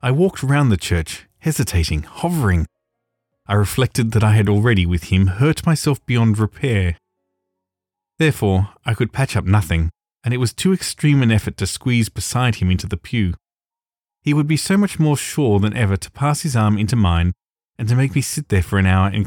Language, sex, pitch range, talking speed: English, male, 95-130 Hz, 200 wpm